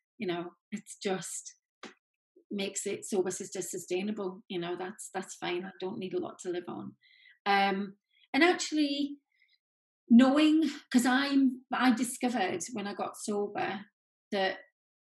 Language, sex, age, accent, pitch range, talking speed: English, female, 30-49, British, 185-230 Hz, 140 wpm